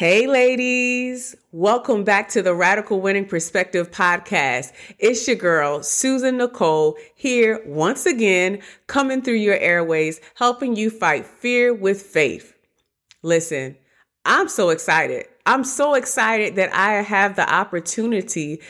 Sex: female